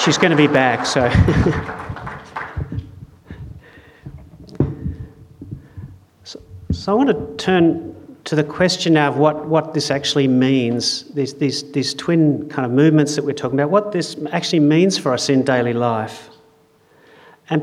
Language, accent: English, Australian